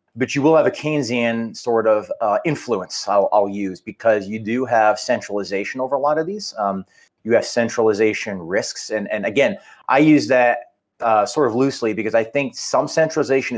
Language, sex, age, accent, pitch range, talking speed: English, male, 30-49, American, 105-130 Hz, 190 wpm